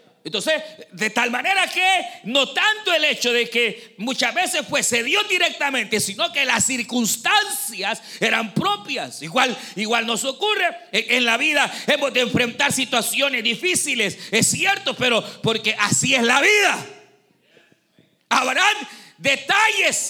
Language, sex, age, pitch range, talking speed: Spanish, male, 40-59, 225-335 Hz, 135 wpm